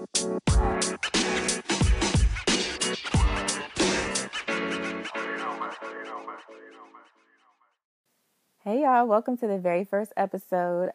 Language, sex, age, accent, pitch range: English, female, 20-39, American, 175-220 Hz